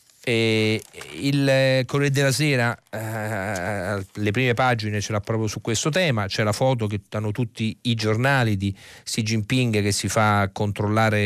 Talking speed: 160 wpm